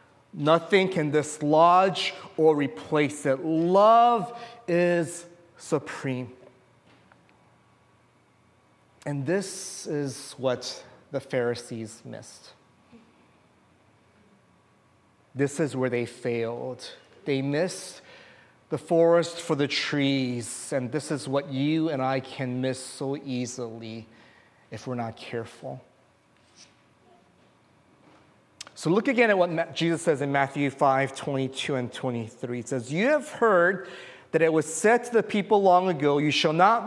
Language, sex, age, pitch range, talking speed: English, male, 30-49, 130-175 Hz, 115 wpm